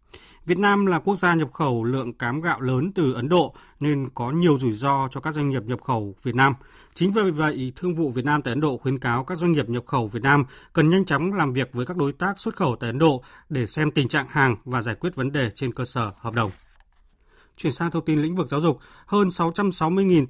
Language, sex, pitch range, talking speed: Vietnamese, male, 125-165 Hz, 250 wpm